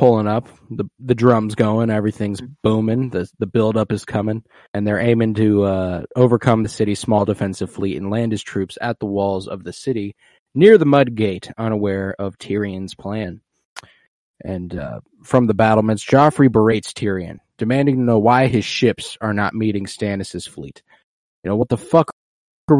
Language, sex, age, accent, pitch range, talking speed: English, male, 20-39, American, 105-125 Hz, 175 wpm